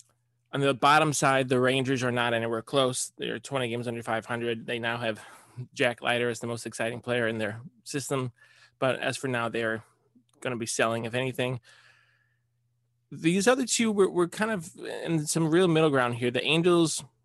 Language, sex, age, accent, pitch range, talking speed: English, male, 20-39, American, 120-140 Hz, 190 wpm